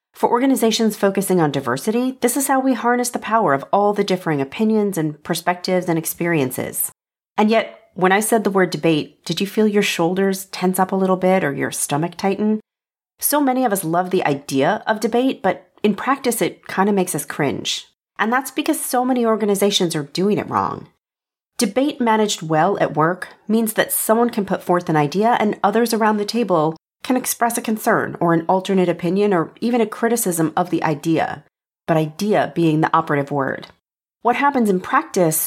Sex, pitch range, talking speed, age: female, 170-225 Hz, 195 wpm, 40-59